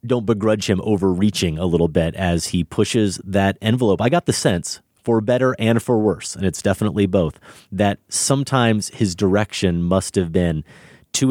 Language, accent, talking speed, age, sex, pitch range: English, American, 175 wpm, 30-49, male, 95-115 Hz